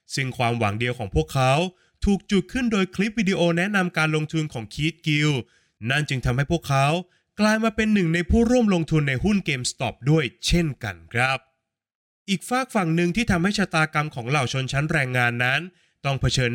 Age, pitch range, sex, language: 20-39, 125-175 Hz, male, Thai